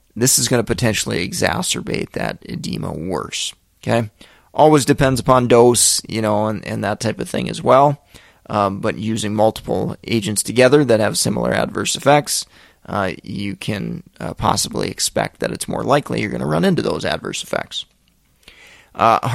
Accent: American